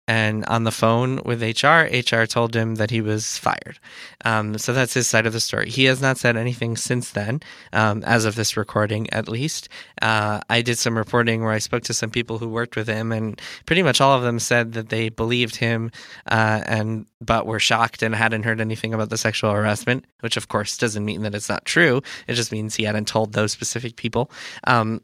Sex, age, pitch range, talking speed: male, 20-39, 110-120 Hz, 225 wpm